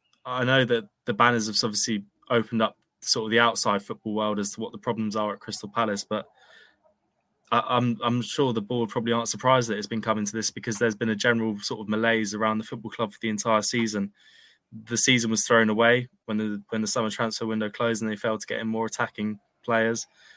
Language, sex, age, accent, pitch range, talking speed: English, male, 20-39, British, 110-115 Hz, 230 wpm